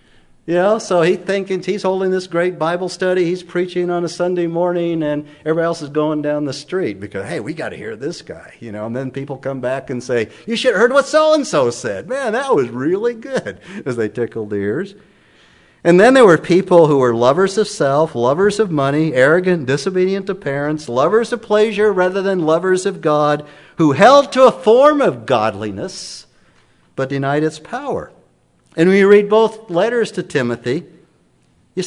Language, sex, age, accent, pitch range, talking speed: English, male, 50-69, American, 120-180 Hz, 195 wpm